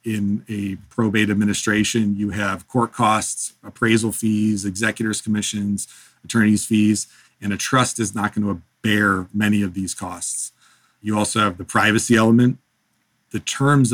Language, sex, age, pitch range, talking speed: English, male, 40-59, 100-110 Hz, 145 wpm